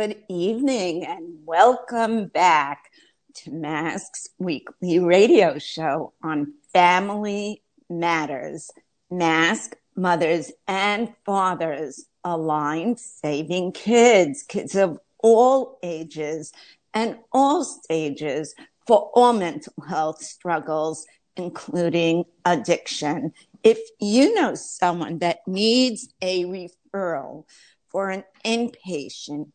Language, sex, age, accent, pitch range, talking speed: English, female, 50-69, American, 165-215 Hz, 90 wpm